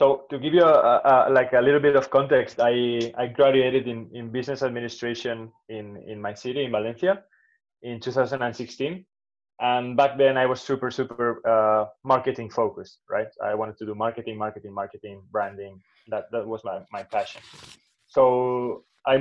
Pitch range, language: 115-140 Hz, English